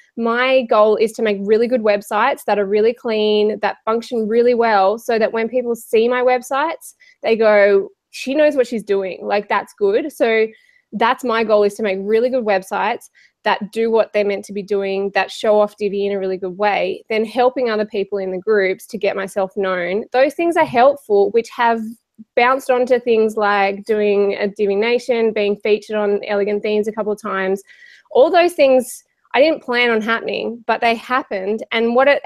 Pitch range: 205-255 Hz